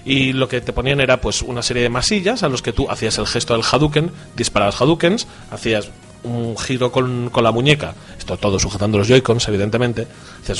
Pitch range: 120-160 Hz